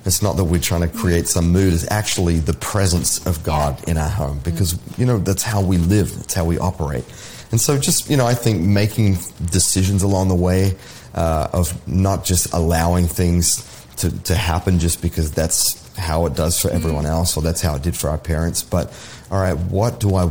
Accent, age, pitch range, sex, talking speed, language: Australian, 30-49, 85-100 Hz, male, 215 wpm, English